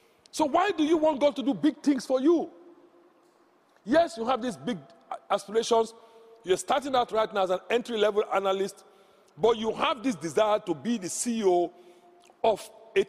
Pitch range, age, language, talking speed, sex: 180-260 Hz, 50-69, English, 175 wpm, male